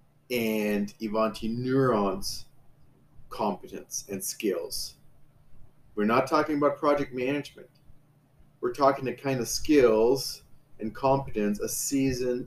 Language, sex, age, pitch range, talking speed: English, male, 40-59, 115-145 Hz, 105 wpm